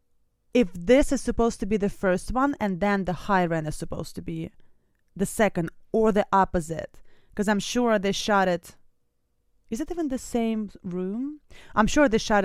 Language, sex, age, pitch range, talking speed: English, female, 30-49, 175-215 Hz, 190 wpm